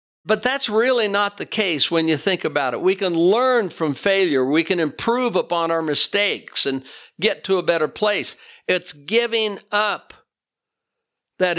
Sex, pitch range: male, 155-200 Hz